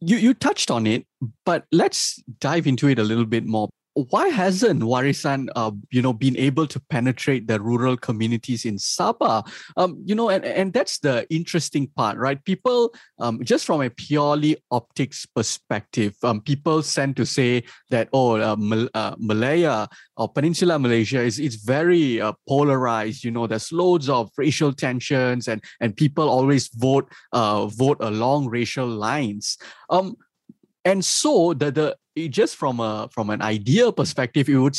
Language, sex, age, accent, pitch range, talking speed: English, male, 20-39, Malaysian, 115-150 Hz, 165 wpm